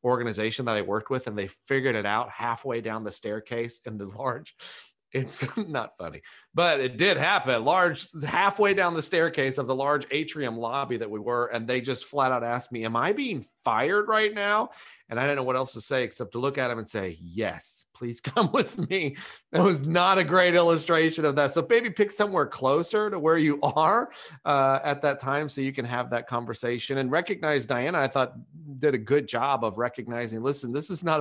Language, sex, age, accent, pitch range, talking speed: English, male, 40-59, American, 110-145 Hz, 215 wpm